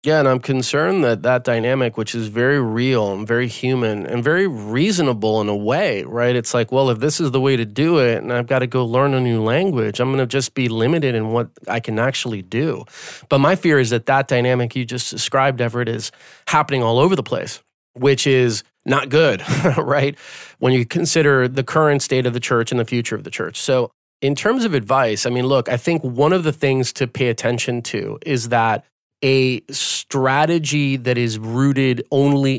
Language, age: English, 30-49